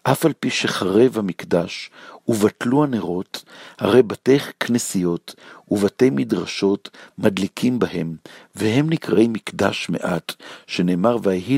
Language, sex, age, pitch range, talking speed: Hebrew, male, 60-79, 95-110 Hz, 105 wpm